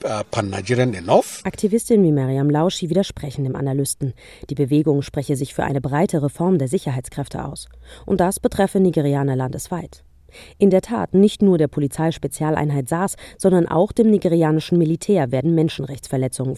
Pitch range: 140-175 Hz